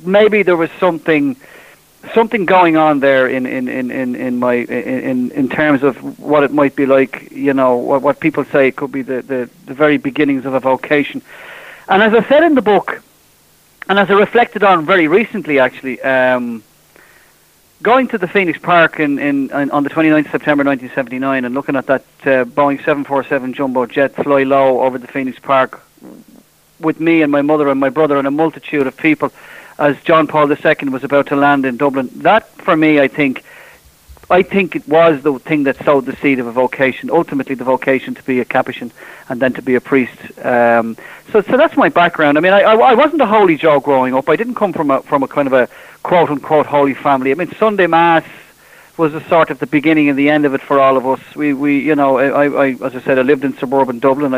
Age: 30-49